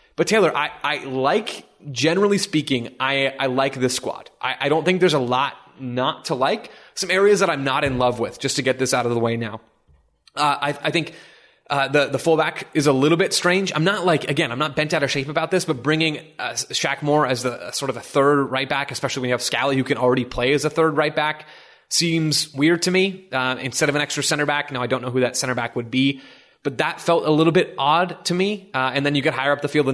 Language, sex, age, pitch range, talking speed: English, male, 20-39, 130-155 Hz, 265 wpm